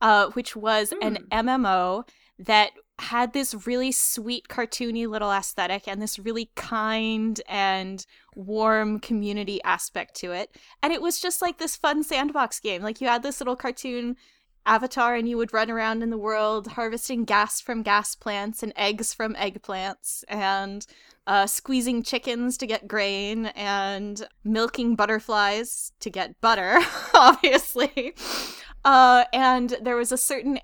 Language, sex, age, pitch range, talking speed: English, female, 10-29, 200-240 Hz, 150 wpm